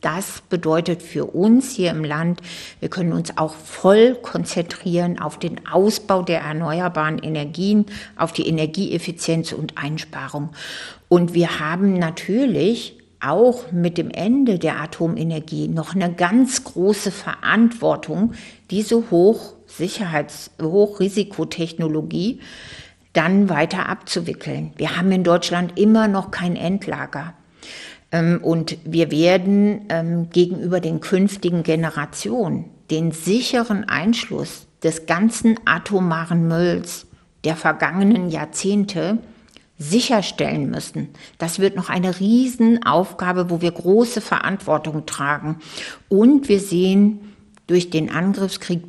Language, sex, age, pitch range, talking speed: German, female, 60-79, 165-205 Hz, 105 wpm